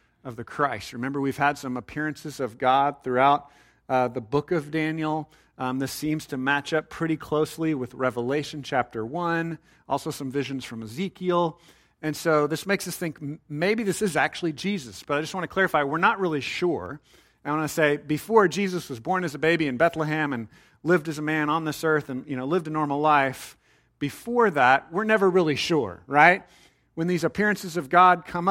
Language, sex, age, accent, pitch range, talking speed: English, male, 40-59, American, 145-180 Hz, 200 wpm